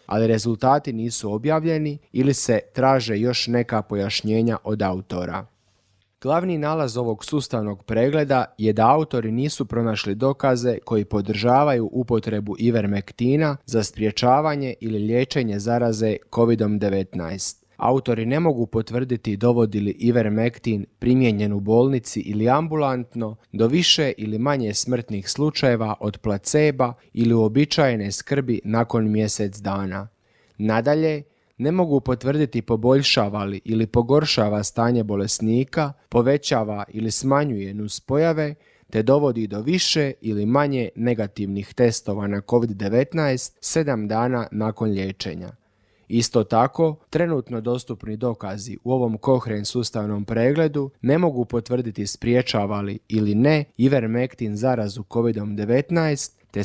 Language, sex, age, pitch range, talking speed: Croatian, male, 30-49, 105-135 Hz, 110 wpm